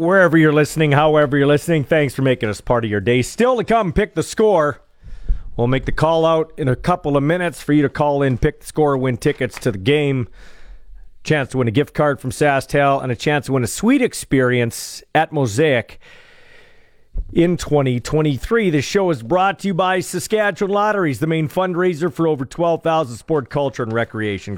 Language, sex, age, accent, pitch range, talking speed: English, male, 40-59, American, 135-210 Hz, 200 wpm